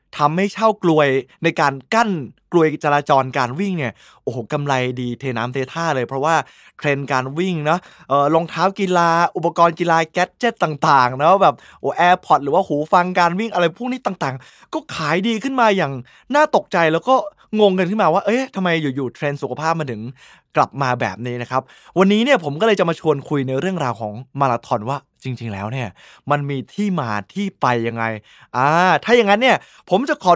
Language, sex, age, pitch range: Thai, male, 20-39, 135-200 Hz